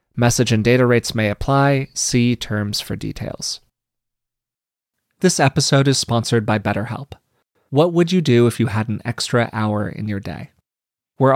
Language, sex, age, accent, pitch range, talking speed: English, male, 30-49, American, 110-135 Hz, 160 wpm